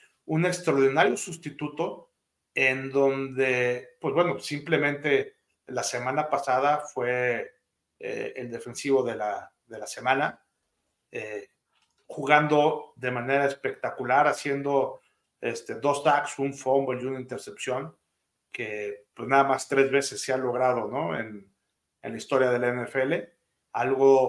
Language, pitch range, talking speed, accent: Spanish, 125-145 Hz, 130 wpm, Mexican